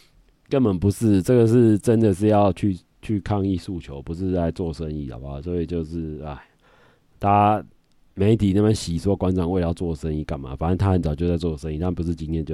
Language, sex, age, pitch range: Chinese, male, 30-49, 85-100 Hz